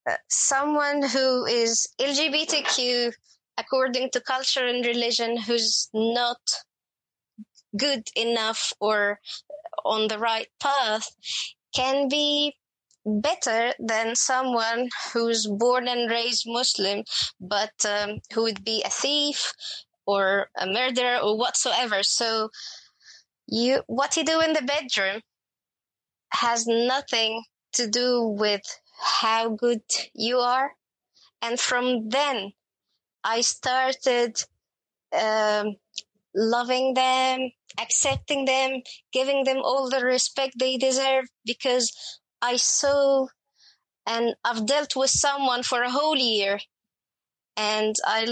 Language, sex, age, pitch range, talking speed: English, female, 20-39, 225-270 Hz, 110 wpm